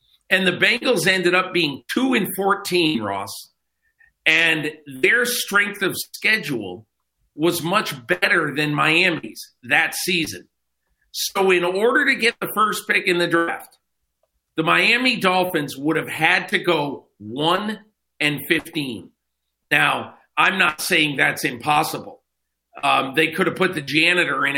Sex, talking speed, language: male, 140 wpm, English